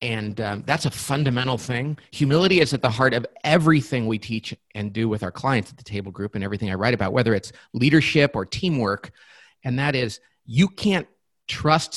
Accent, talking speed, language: American, 200 wpm, English